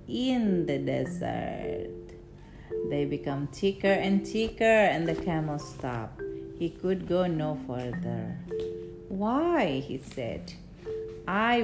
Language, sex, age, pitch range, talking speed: Indonesian, female, 40-59, 145-230 Hz, 110 wpm